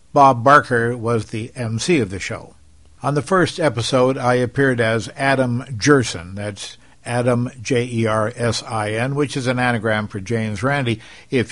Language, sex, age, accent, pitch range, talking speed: English, male, 60-79, American, 105-140 Hz, 145 wpm